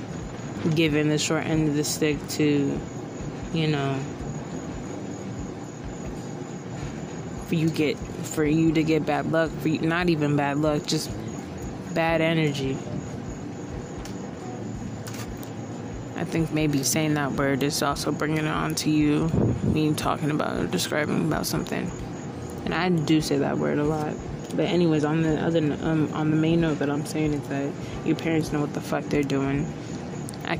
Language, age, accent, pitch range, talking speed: English, 20-39, American, 145-160 Hz, 155 wpm